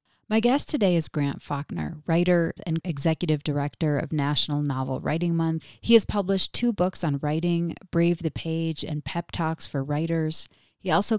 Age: 30-49